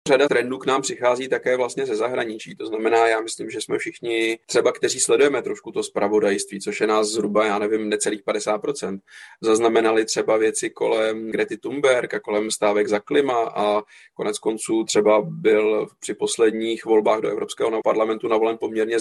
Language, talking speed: Czech, 175 wpm